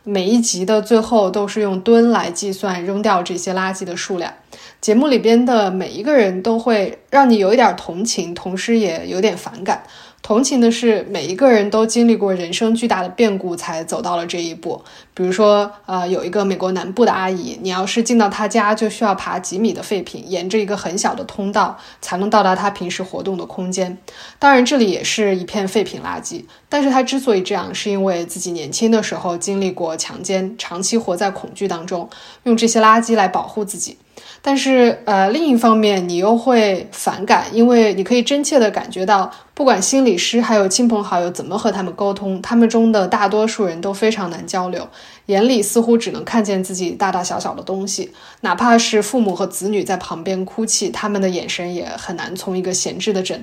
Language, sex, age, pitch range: Chinese, female, 20-39, 185-225 Hz